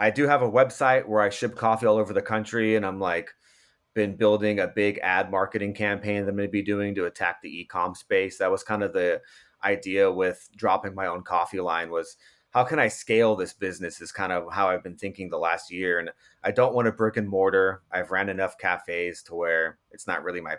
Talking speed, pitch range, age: 240 wpm, 95-115 Hz, 30-49